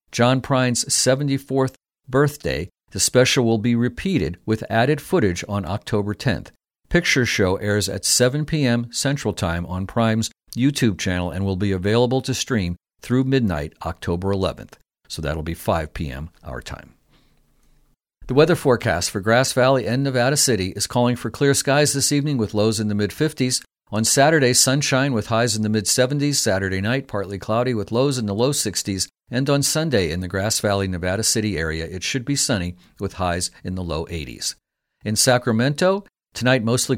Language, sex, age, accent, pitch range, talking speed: English, male, 50-69, American, 100-135 Hz, 175 wpm